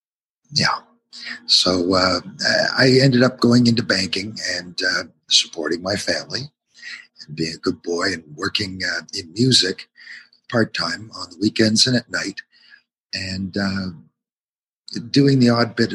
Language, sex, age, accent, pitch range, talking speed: English, male, 50-69, American, 95-130 Hz, 140 wpm